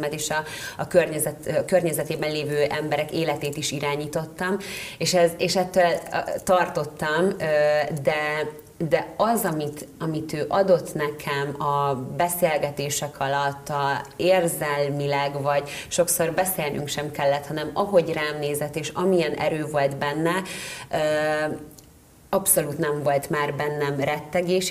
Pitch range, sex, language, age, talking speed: 150-180 Hz, female, Hungarian, 30-49, 120 wpm